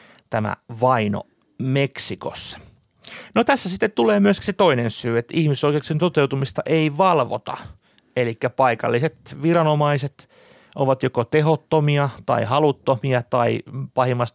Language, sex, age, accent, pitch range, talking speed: Finnish, male, 30-49, native, 120-165 Hz, 110 wpm